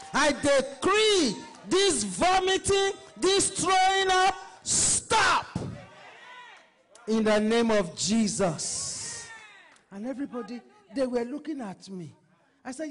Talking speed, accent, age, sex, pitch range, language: 100 wpm, Nigerian, 50-69, male, 225-345 Hz, English